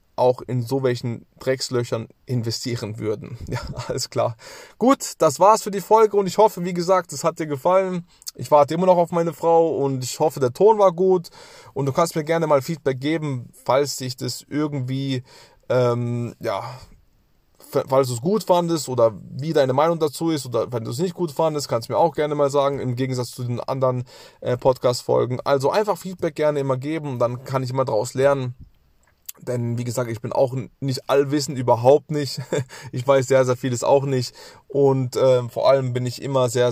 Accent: German